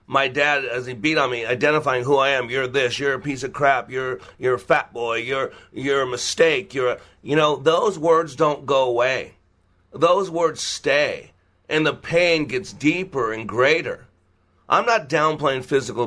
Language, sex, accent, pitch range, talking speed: English, male, American, 115-150 Hz, 185 wpm